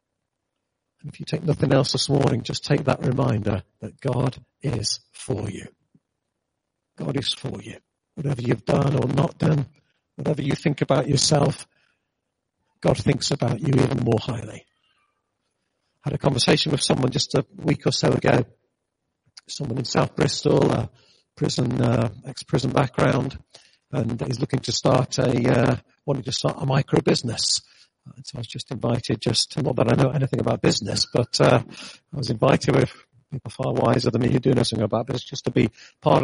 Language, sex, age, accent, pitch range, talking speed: English, male, 50-69, British, 120-145 Hz, 175 wpm